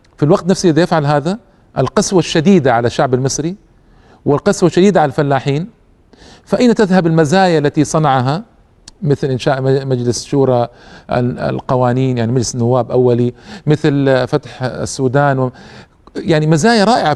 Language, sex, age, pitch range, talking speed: Arabic, male, 50-69, 115-155 Hz, 120 wpm